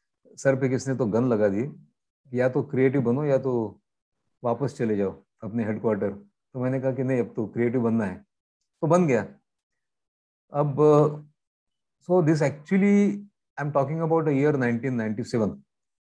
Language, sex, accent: Hindi, male, native